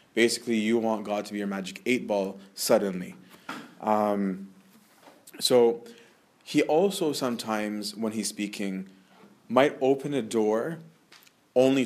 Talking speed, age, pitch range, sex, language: 120 wpm, 30-49, 100-120 Hz, male, English